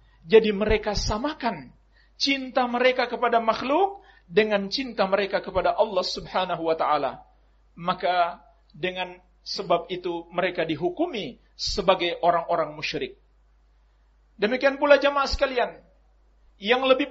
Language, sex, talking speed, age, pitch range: Indonesian, male, 105 wpm, 40-59, 200-275 Hz